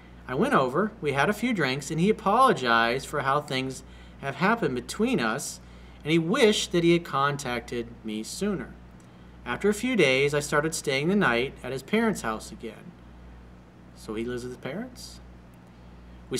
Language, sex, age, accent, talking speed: English, male, 40-59, American, 175 wpm